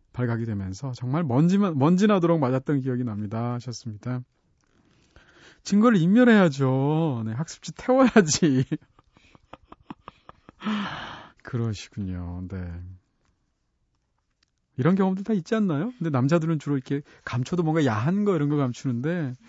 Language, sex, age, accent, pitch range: Korean, male, 30-49, native, 125-180 Hz